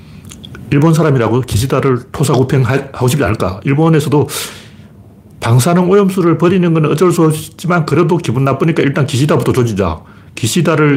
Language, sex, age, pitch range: Korean, male, 40-59, 110-165 Hz